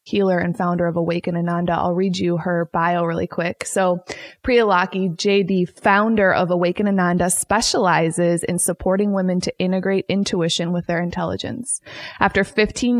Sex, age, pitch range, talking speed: female, 20-39, 175-200 Hz, 150 wpm